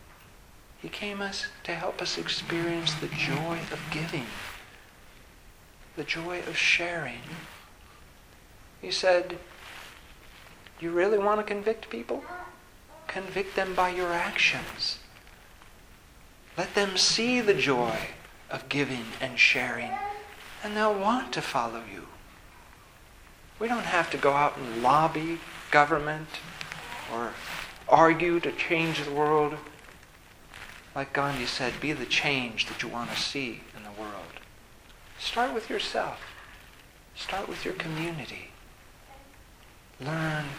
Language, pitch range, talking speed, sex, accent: English, 130-195 Hz, 120 wpm, male, American